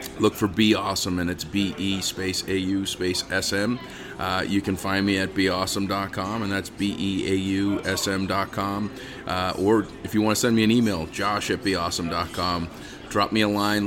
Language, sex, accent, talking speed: English, male, American, 140 wpm